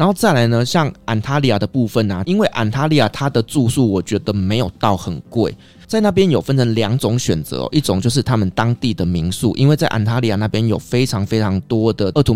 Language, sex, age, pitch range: Chinese, male, 20-39, 100-130 Hz